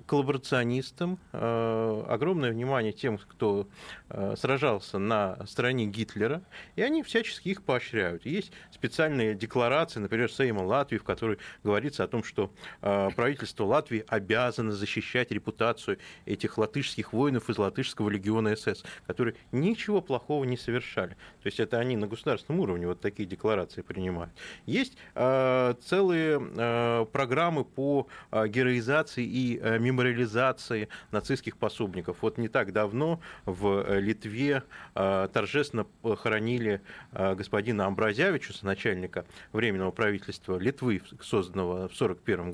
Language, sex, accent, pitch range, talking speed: Russian, male, native, 105-140 Hz, 125 wpm